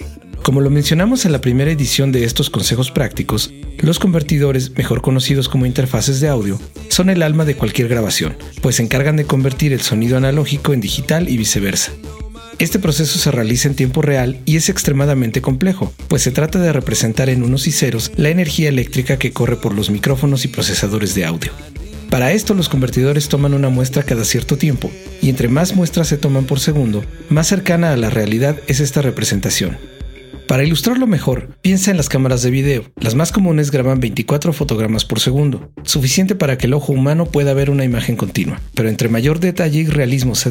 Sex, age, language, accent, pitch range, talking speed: male, 40-59, Spanish, Mexican, 125-155 Hz, 195 wpm